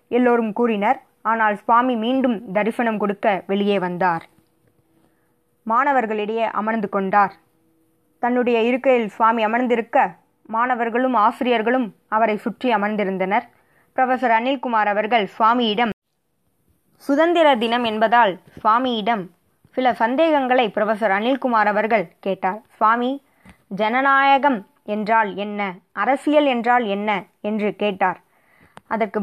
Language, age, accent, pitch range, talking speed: Tamil, 20-39, native, 200-250 Hz, 90 wpm